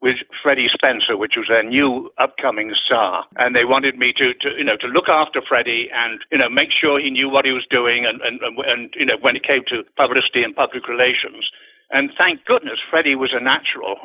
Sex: male